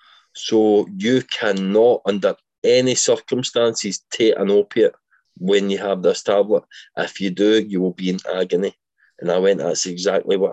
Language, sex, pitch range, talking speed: English, male, 100-130 Hz, 160 wpm